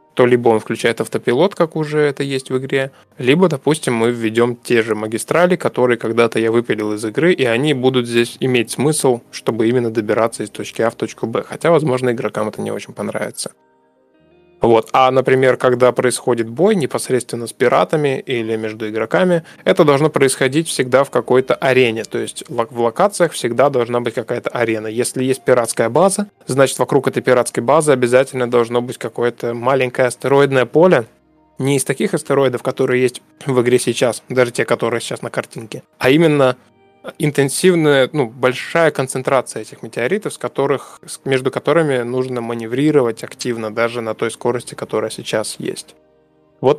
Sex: male